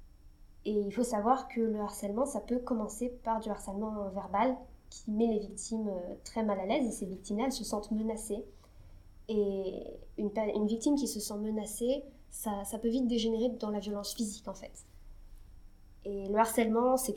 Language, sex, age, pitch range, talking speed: French, female, 20-39, 200-235 Hz, 180 wpm